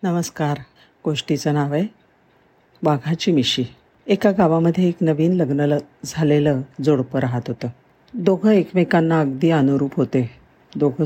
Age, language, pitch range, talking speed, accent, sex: 50-69, Marathi, 135-175 Hz, 115 wpm, native, female